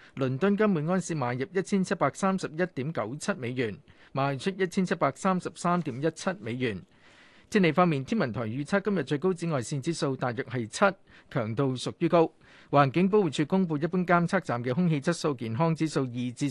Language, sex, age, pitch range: Chinese, male, 50-69, 130-175 Hz